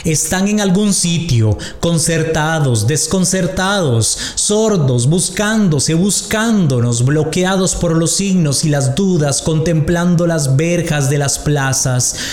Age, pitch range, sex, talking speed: 30-49, 130-165 Hz, male, 105 wpm